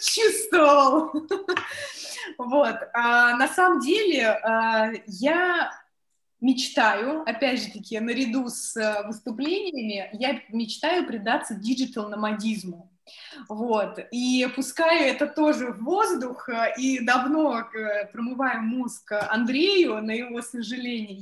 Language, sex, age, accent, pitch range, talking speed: Russian, female, 20-39, native, 215-280 Hz, 95 wpm